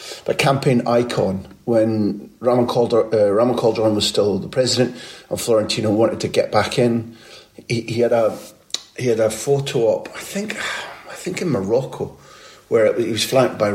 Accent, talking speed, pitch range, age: British, 180 wpm, 100-130 Hz, 40-59